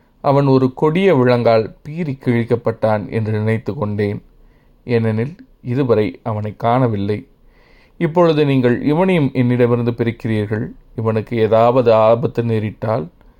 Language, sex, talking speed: Tamil, male, 100 wpm